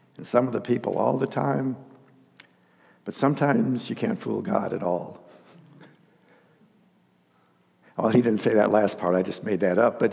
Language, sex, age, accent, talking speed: English, male, 60-79, American, 165 wpm